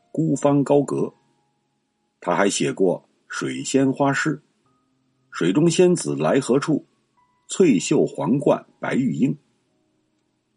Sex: male